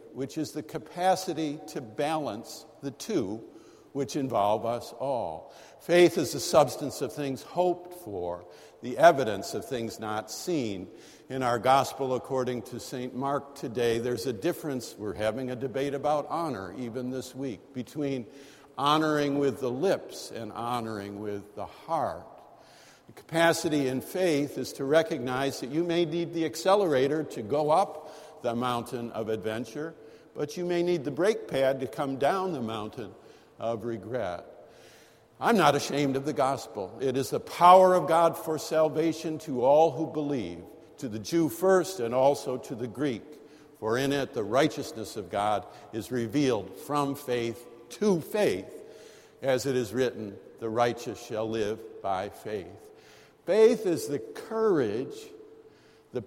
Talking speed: 155 wpm